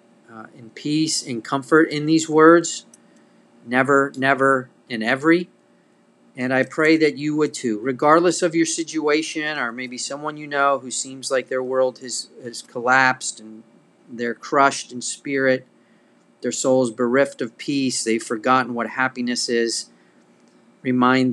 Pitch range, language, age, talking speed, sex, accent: 115-140 Hz, English, 40-59, 145 wpm, male, American